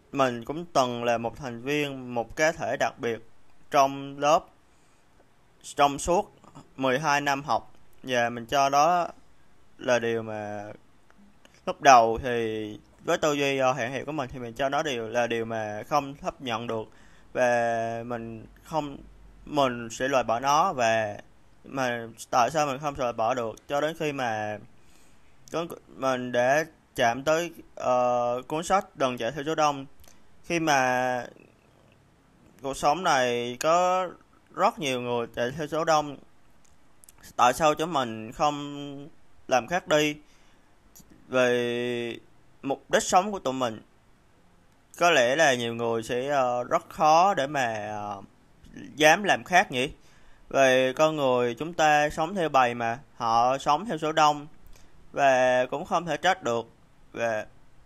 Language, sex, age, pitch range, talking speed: Vietnamese, male, 20-39, 115-150 Hz, 150 wpm